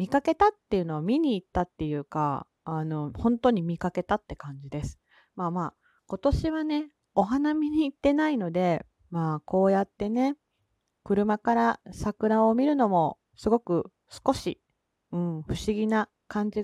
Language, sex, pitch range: Japanese, female, 180-260 Hz